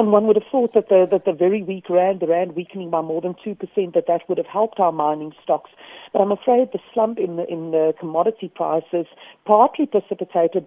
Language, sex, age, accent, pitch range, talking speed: English, female, 50-69, British, 155-195 Hz, 210 wpm